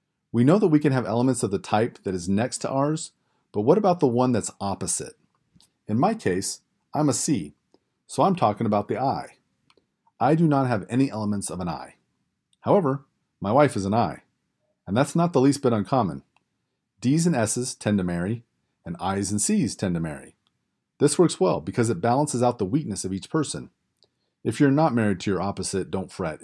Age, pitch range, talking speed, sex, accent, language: 40-59, 100-140 Hz, 205 wpm, male, American, English